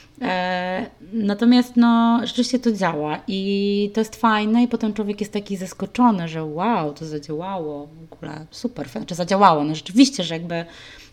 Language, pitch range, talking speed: Polish, 185-225 Hz, 150 wpm